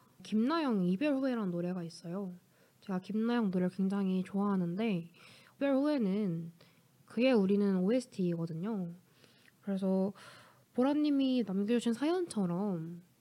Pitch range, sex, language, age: 185-240 Hz, female, Korean, 20-39